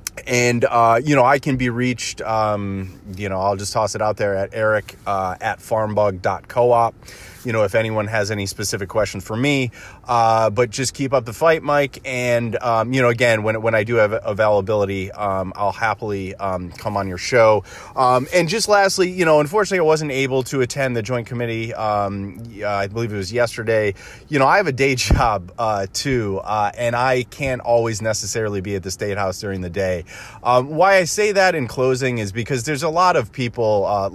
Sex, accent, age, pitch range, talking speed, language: male, American, 30-49, 100-125 Hz, 205 wpm, English